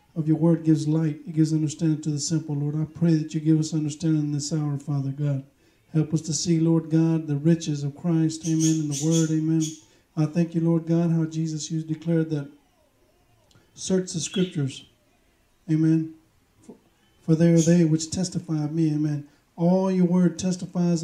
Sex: male